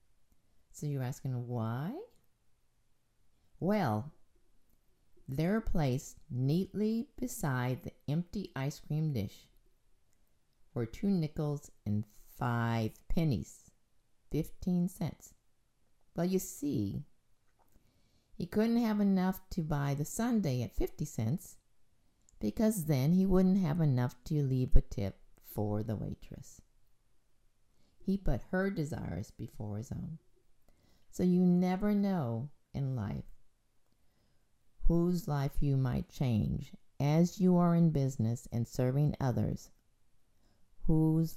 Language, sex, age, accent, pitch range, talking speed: English, female, 50-69, American, 125-180 Hz, 110 wpm